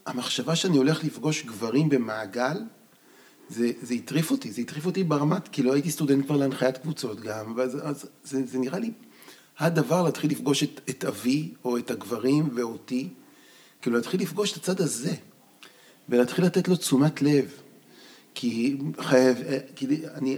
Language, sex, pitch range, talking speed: Hebrew, male, 125-160 Hz, 150 wpm